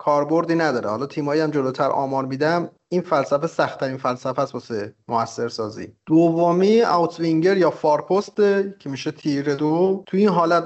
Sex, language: male, Persian